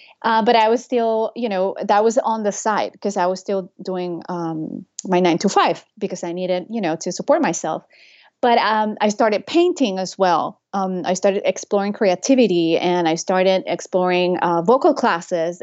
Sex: female